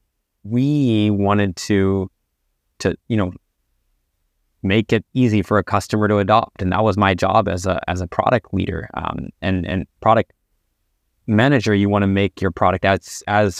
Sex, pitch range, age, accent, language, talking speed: male, 95-110 Hz, 20-39, American, English, 170 wpm